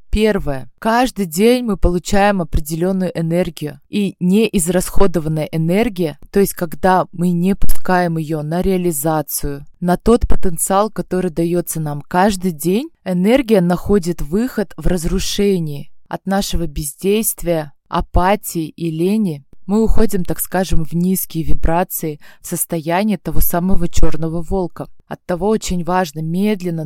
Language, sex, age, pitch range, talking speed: Russian, female, 20-39, 160-190 Hz, 125 wpm